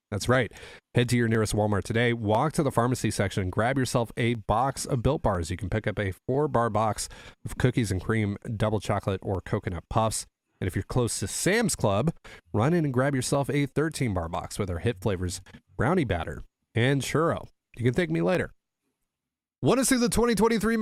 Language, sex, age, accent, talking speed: English, male, 30-49, American, 195 wpm